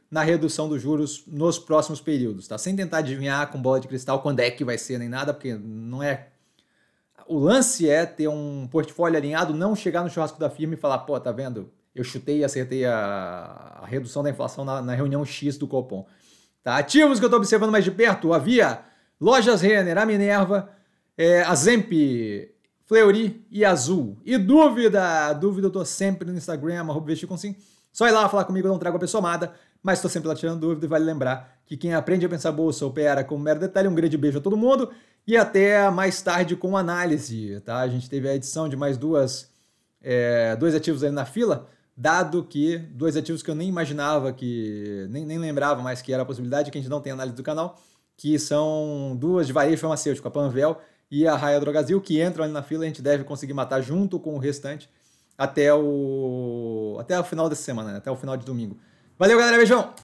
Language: Portuguese